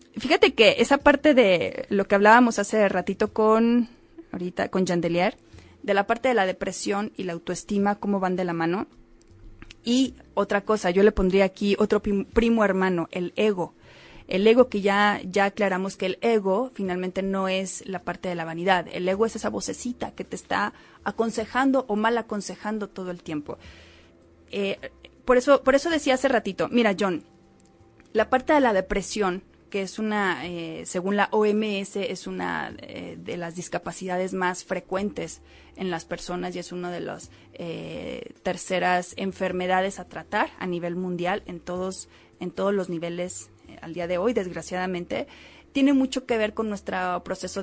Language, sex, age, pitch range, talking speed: Spanish, female, 30-49, 180-215 Hz, 175 wpm